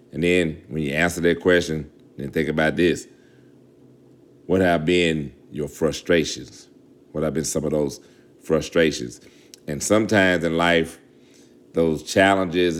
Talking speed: 135 wpm